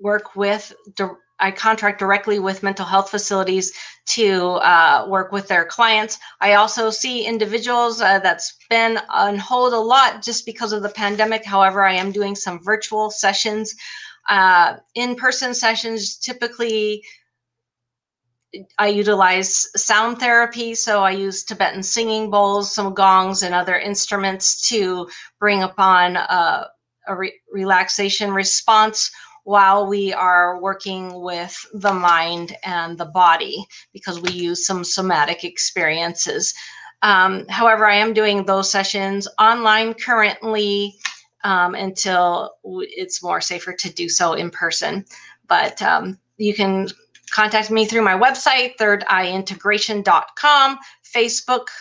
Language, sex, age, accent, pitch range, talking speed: English, female, 40-59, American, 190-220 Hz, 130 wpm